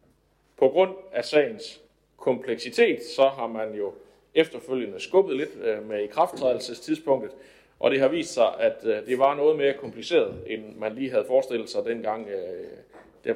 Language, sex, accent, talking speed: Danish, male, native, 155 wpm